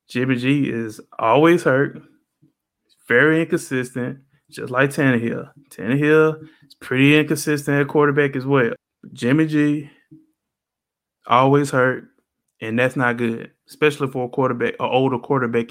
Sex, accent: male, American